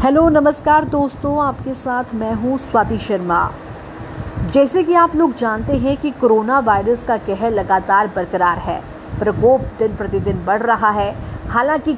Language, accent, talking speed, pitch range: English, Indian, 150 wpm, 205-270 Hz